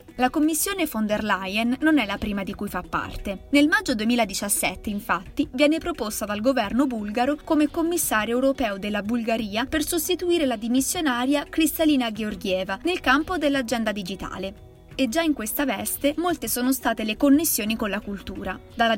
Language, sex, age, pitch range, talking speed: Italian, female, 20-39, 215-285 Hz, 160 wpm